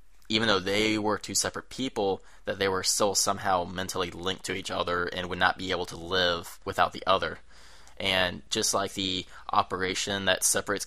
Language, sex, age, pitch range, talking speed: English, male, 20-39, 90-100 Hz, 190 wpm